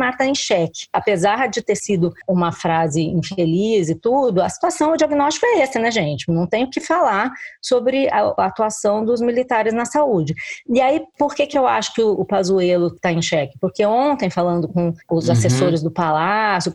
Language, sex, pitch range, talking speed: Portuguese, female, 180-265 Hz, 195 wpm